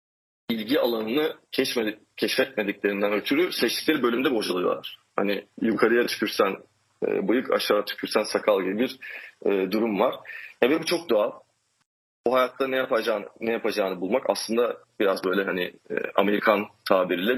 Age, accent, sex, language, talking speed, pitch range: 40-59, native, male, Turkish, 120 wpm, 105-145 Hz